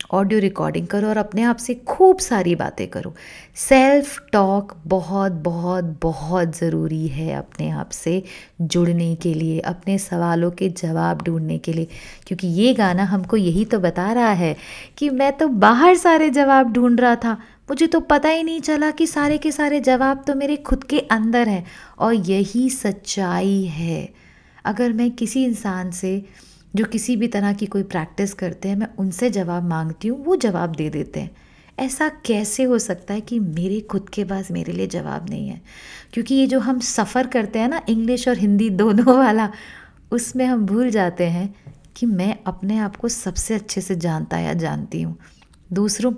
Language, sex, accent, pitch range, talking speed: Hindi, female, native, 170-240 Hz, 180 wpm